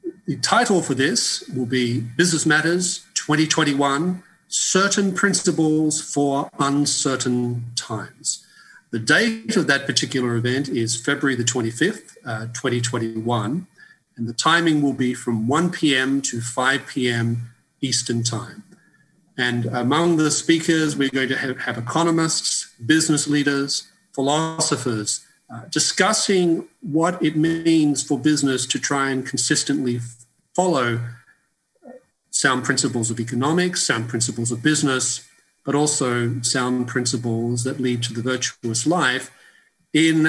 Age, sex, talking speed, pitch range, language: 40-59, male, 125 wpm, 120-155 Hz, English